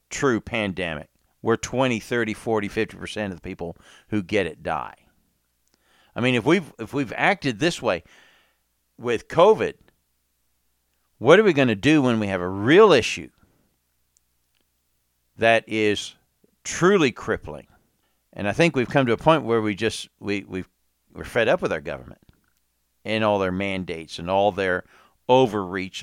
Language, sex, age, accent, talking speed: English, male, 50-69, American, 155 wpm